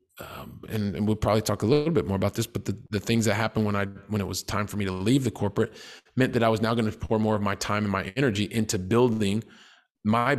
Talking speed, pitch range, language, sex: 270 wpm, 105-120 Hz, English, male